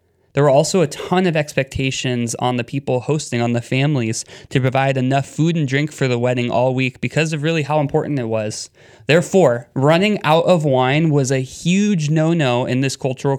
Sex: male